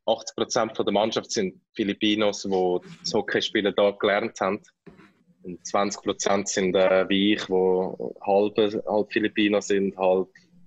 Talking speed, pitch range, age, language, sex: 135 wpm, 100-125 Hz, 20-39, German, male